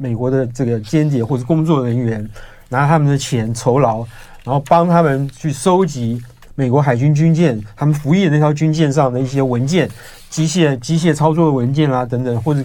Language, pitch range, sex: Chinese, 125-160 Hz, male